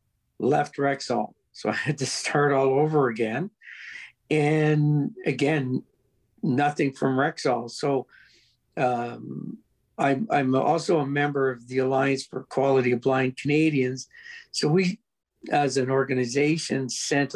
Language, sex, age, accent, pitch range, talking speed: English, male, 60-79, American, 130-145 Hz, 120 wpm